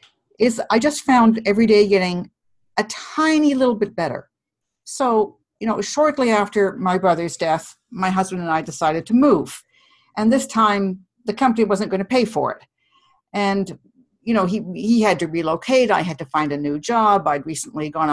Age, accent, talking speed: 60-79, American, 190 wpm